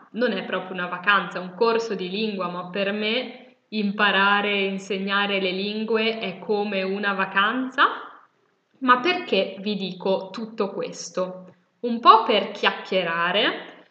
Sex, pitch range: female, 185-235 Hz